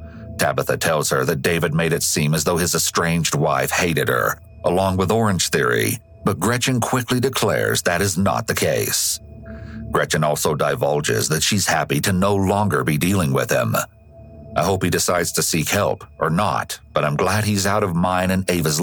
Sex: male